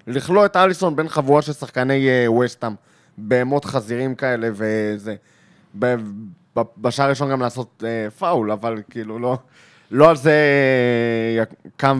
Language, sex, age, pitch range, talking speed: Hebrew, male, 20-39, 125-170 Hz, 135 wpm